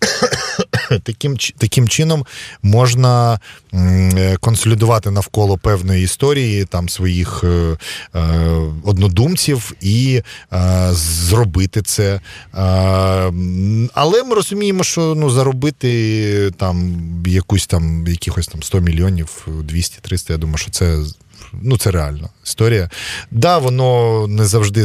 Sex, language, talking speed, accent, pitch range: male, Ukrainian, 110 wpm, native, 95-120 Hz